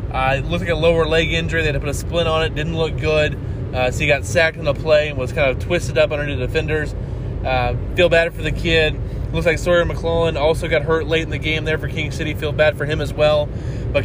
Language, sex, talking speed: English, male, 275 wpm